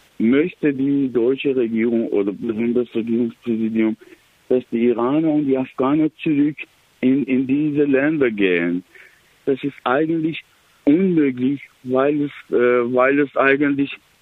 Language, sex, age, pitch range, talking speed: German, male, 60-79, 110-140 Hz, 125 wpm